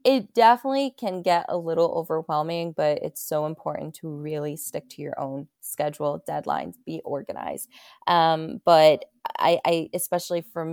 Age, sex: 20-39, female